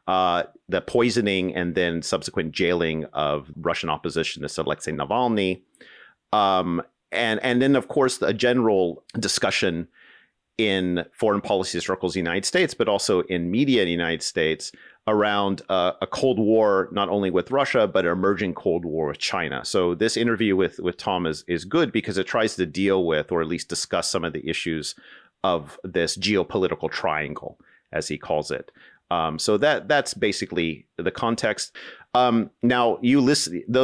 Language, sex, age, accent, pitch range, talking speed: English, male, 40-59, American, 85-110 Hz, 170 wpm